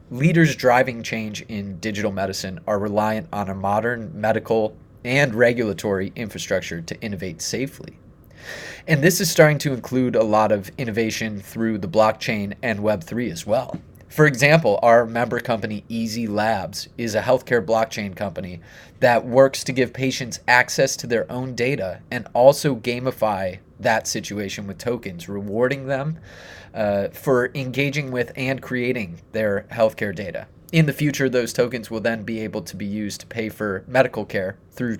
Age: 30-49